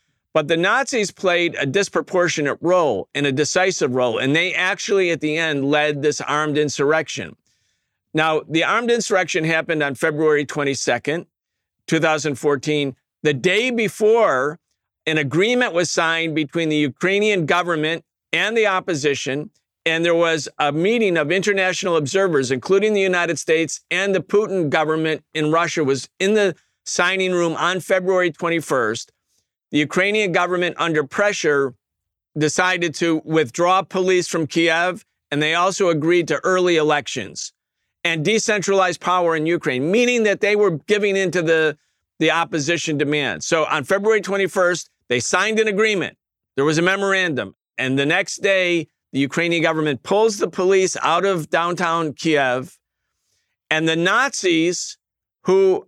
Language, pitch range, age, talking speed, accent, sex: English, 150-190 Hz, 50-69, 145 wpm, American, male